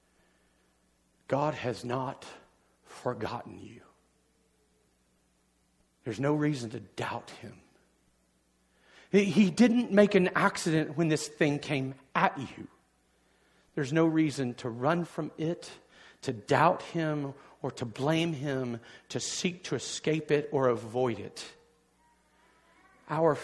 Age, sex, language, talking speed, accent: 50-69, male, English, 115 wpm, American